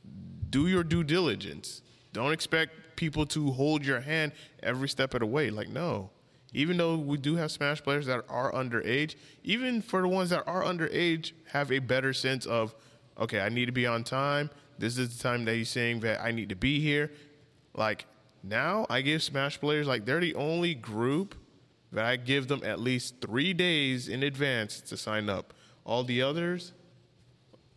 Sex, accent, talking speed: male, American, 190 wpm